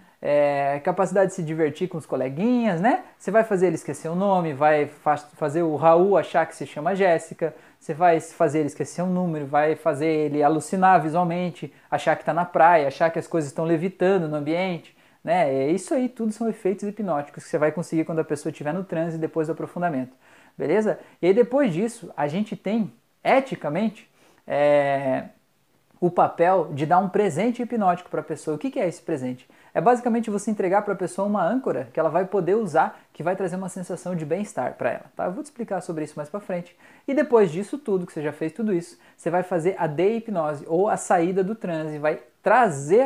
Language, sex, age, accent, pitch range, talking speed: Portuguese, male, 20-39, Brazilian, 155-200 Hz, 215 wpm